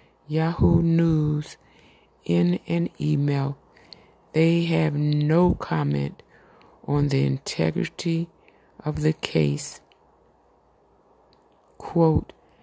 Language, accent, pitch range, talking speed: English, American, 140-170 Hz, 75 wpm